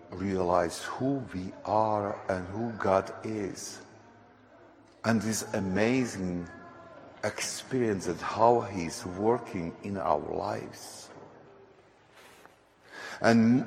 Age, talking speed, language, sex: 60-79, 90 wpm, English, male